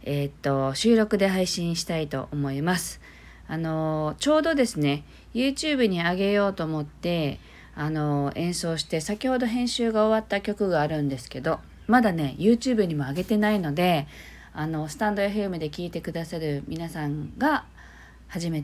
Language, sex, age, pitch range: Japanese, female, 40-59, 145-215 Hz